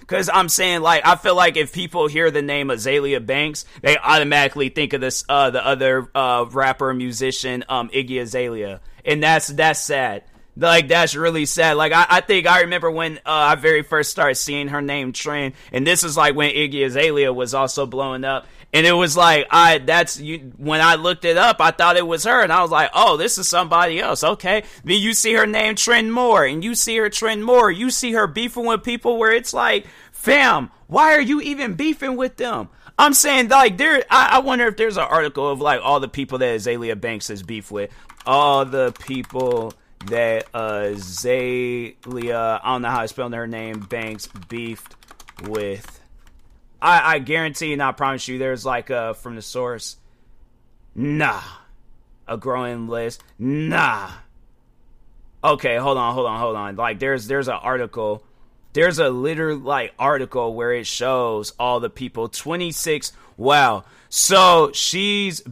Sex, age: male, 30-49